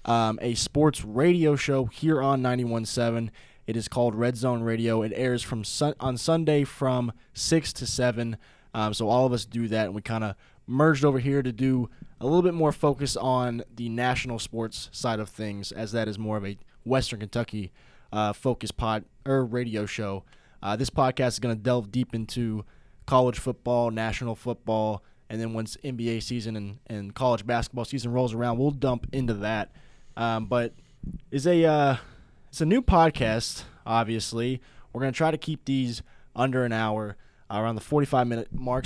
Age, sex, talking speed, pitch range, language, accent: 20-39, male, 185 wpm, 110-135 Hz, English, American